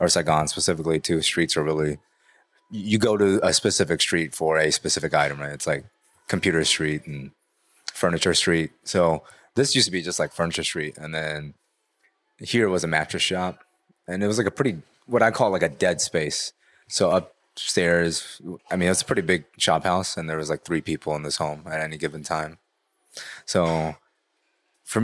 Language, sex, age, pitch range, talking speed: English, male, 20-39, 80-100 Hz, 190 wpm